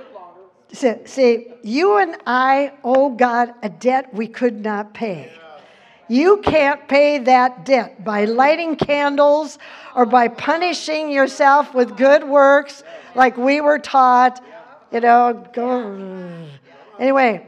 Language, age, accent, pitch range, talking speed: English, 50-69, American, 235-300 Hz, 115 wpm